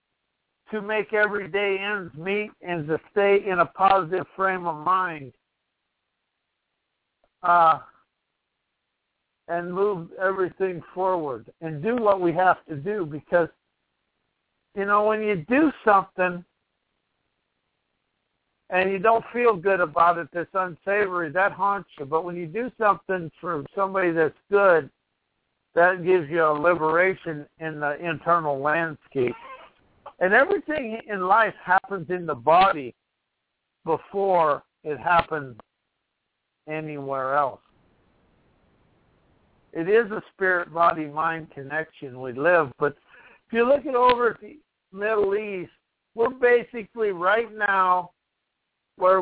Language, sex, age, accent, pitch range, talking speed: English, male, 60-79, American, 160-200 Hz, 120 wpm